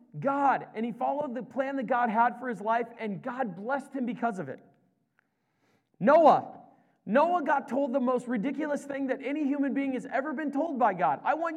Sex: male